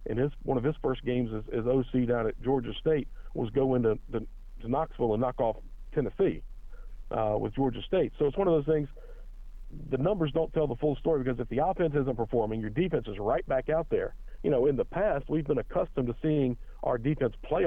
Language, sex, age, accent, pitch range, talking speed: English, male, 50-69, American, 120-145 Hz, 225 wpm